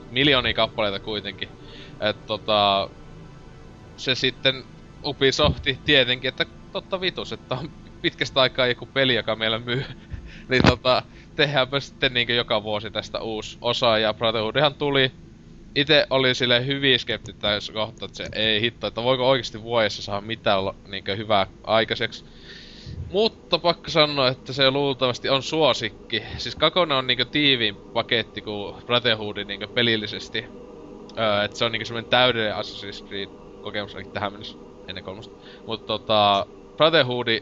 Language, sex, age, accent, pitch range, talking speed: Finnish, male, 20-39, native, 105-130 Hz, 150 wpm